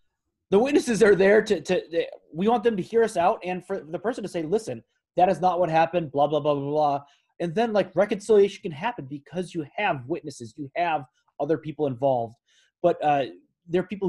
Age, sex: 30-49, male